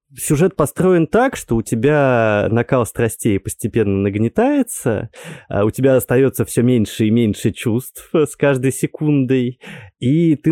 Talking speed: 130 wpm